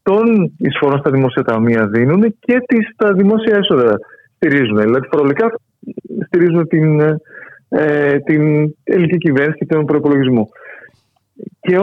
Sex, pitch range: male, 125-180 Hz